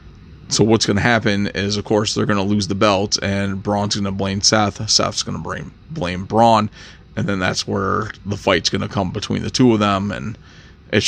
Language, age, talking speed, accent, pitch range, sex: English, 20-39, 225 wpm, American, 100-110 Hz, male